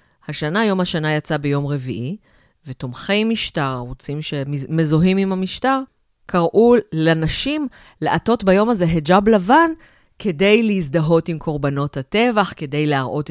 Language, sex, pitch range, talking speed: Hebrew, female, 145-185 Hz, 115 wpm